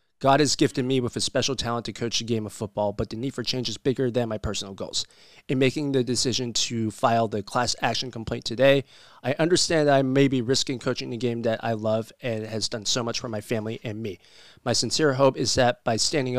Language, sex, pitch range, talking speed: English, male, 110-130 Hz, 240 wpm